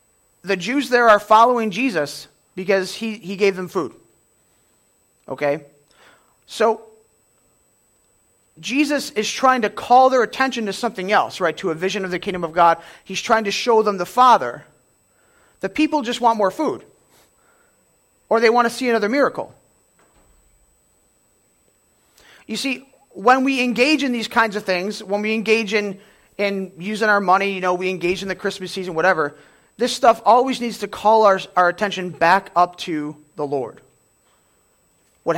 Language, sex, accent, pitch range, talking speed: English, male, American, 180-230 Hz, 160 wpm